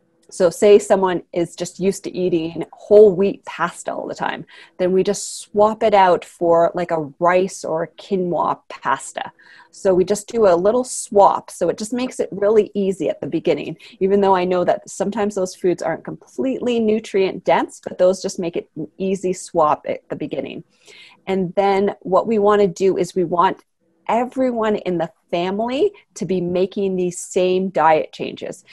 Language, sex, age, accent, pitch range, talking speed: English, female, 30-49, American, 170-205 Hz, 185 wpm